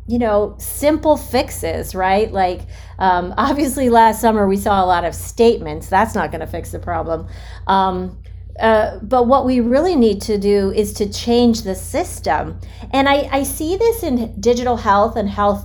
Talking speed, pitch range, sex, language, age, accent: 180 wpm, 185-230 Hz, female, English, 40-59, American